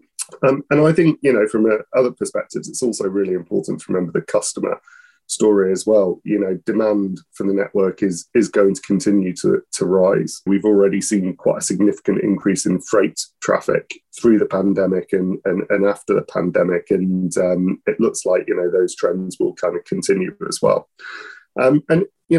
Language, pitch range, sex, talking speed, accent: English, 95-145 Hz, male, 195 wpm, British